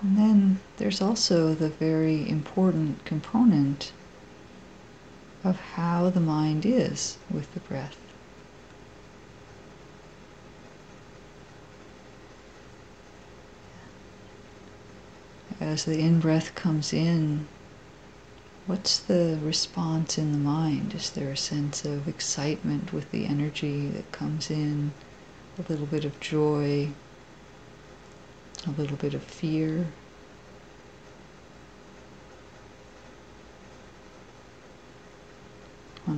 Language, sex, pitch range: English, female, 145-160 Hz